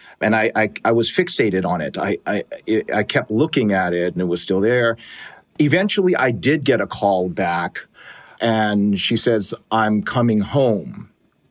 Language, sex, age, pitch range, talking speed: English, male, 40-59, 105-125 Hz, 170 wpm